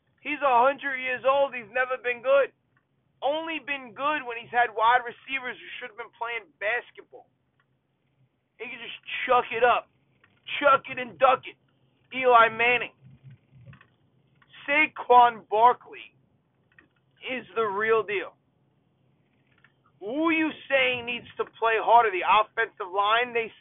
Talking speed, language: 135 wpm, English